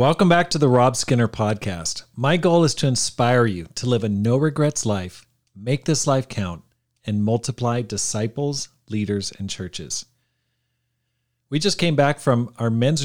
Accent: American